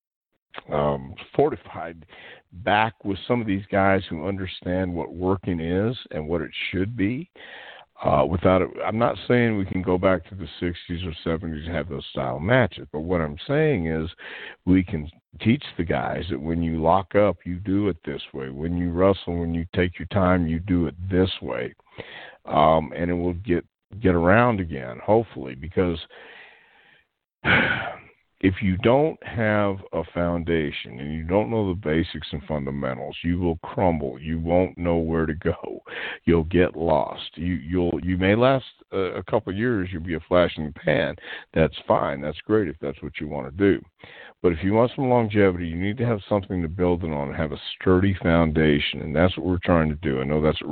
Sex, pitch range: male, 80-95 Hz